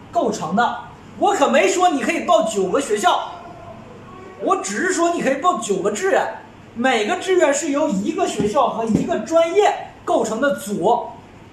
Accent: native